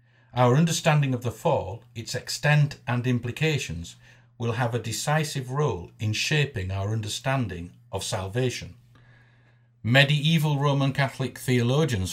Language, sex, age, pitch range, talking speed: English, male, 50-69, 110-130 Hz, 120 wpm